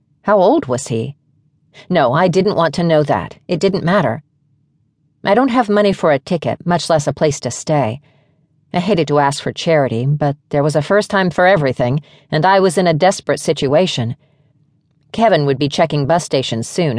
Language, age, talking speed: English, 40-59, 195 wpm